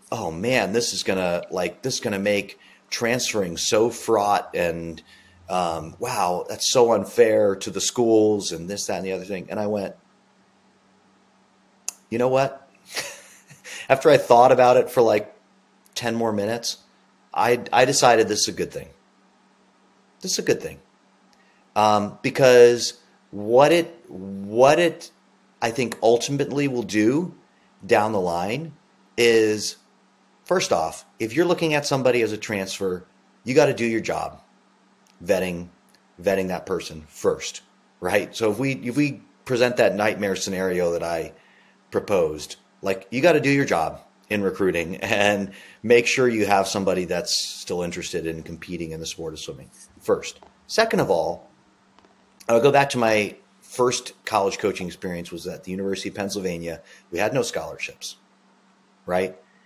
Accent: American